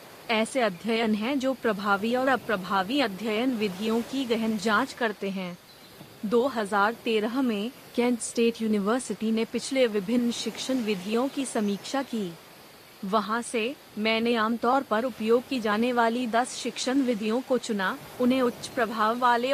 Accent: native